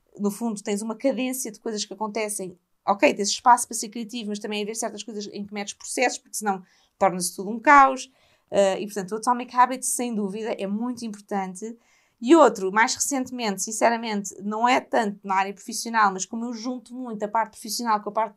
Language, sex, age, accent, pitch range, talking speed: Portuguese, female, 20-39, Brazilian, 200-245 Hz, 210 wpm